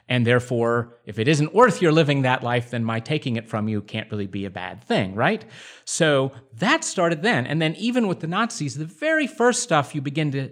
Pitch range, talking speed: 130-175 Hz, 230 wpm